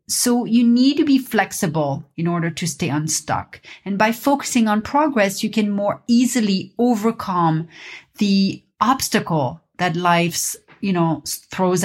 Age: 40-59